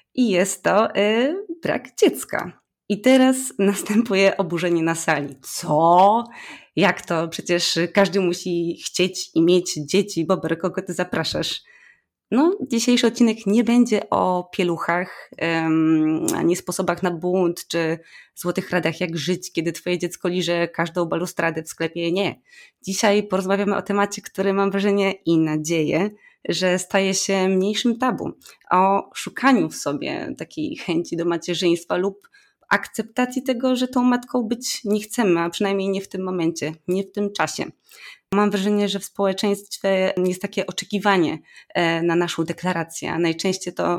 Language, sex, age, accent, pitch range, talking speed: Polish, female, 20-39, native, 170-205 Hz, 145 wpm